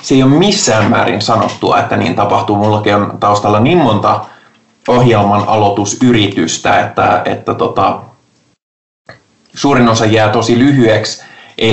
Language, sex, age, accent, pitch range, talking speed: Finnish, male, 20-39, native, 100-115 Hz, 130 wpm